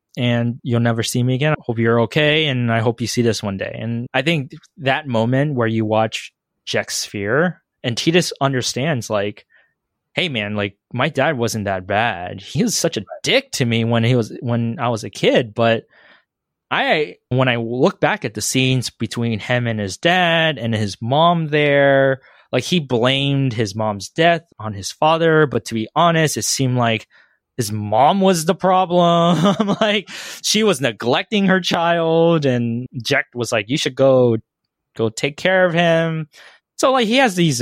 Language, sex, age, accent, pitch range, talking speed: English, male, 20-39, American, 115-155 Hz, 185 wpm